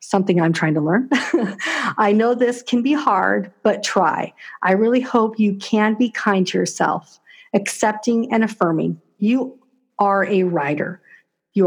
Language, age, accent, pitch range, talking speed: English, 50-69, American, 190-225 Hz, 155 wpm